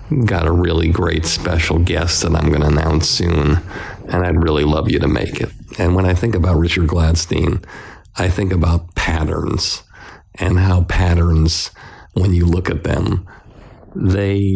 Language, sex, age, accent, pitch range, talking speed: English, male, 50-69, American, 85-95 Hz, 165 wpm